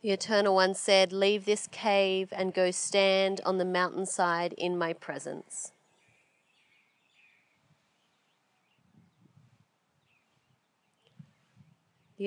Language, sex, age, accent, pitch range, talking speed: English, female, 30-49, Australian, 170-190 Hz, 85 wpm